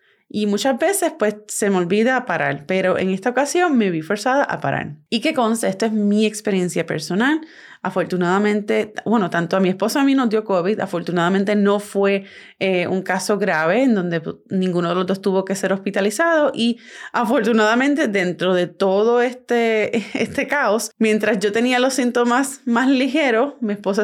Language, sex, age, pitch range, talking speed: Spanish, female, 20-39, 190-240 Hz, 175 wpm